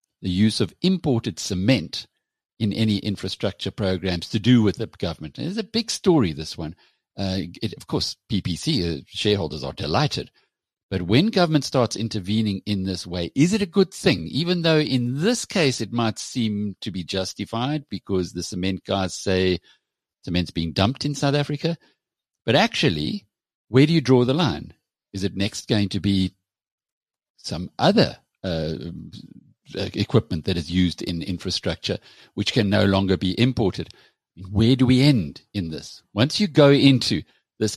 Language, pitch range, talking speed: English, 90-125 Hz, 165 wpm